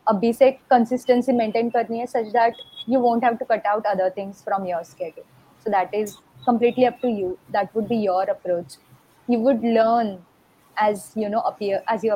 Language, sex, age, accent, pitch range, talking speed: Hindi, female, 20-39, native, 195-230 Hz, 190 wpm